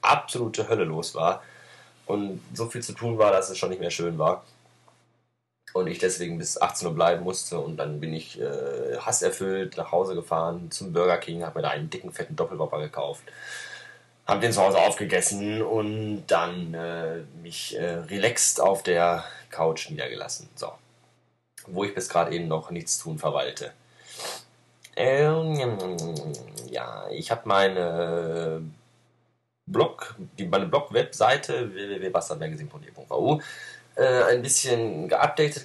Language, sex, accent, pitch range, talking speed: German, male, German, 85-120 Hz, 140 wpm